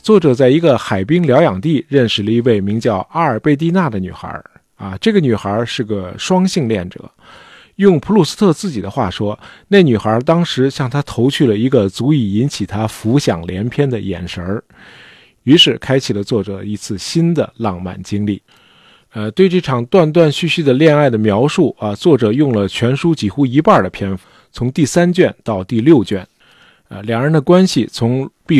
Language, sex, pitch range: Chinese, male, 105-145 Hz